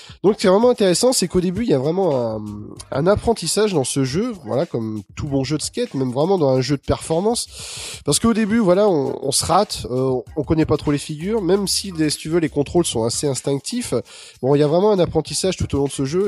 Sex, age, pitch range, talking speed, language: male, 20-39, 130-175 Hz, 260 wpm, French